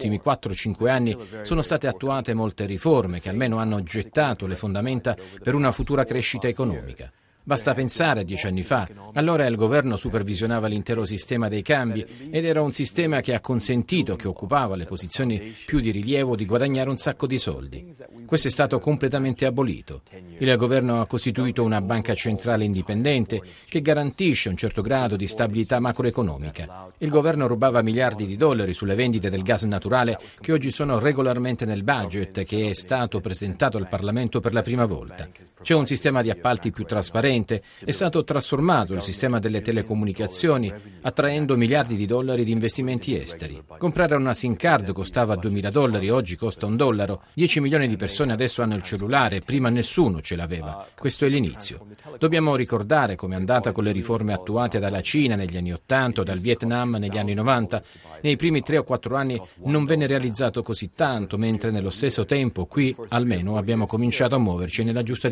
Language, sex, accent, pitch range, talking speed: Italian, male, native, 100-135 Hz, 175 wpm